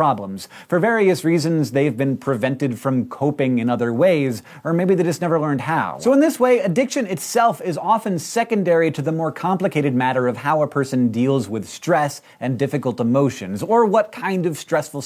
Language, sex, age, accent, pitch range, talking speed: English, male, 30-49, American, 125-175 Hz, 190 wpm